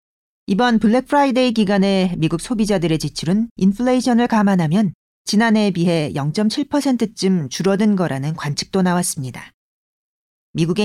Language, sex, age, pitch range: Korean, female, 40-59, 170-235 Hz